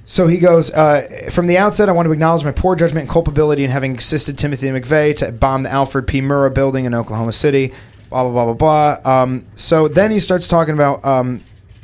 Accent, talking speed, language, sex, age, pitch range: American, 225 wpm, English, male, 20-39, 115-150 Hz